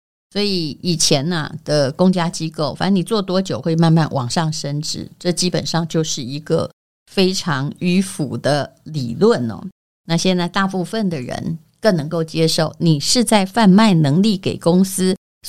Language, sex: Chinese, female